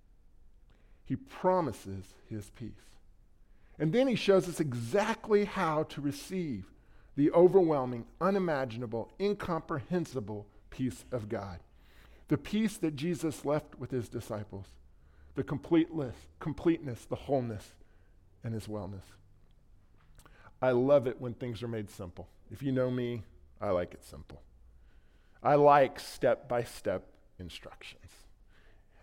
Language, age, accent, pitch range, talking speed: English, 40-59, American, 100-160 Hz, 115 wpm